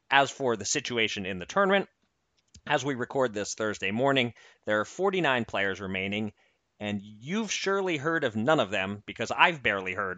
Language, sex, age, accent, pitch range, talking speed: English, male, 30-49, American, 100-135 Hz, 175 wpm